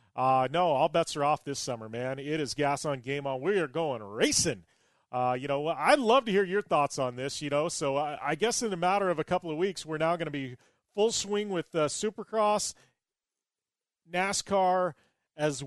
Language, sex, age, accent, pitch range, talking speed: English, male, 30-49, American, 135-165 Hz, 215 wpm